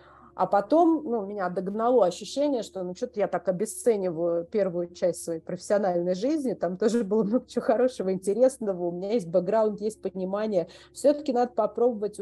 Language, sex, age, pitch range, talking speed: Russian, female, 30-49, 180-230 Hz, 160 wpm